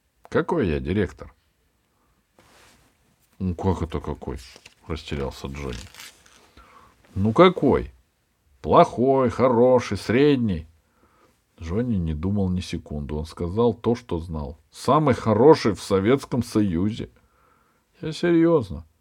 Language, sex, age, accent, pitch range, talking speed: Russian, male, 50-69, native, 80-115 Hz, 100 wpm